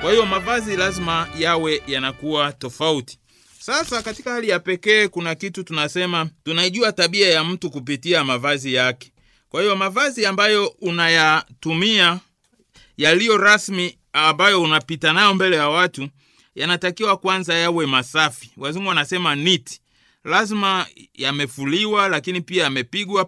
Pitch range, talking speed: 145-190 Hz, 120 wpm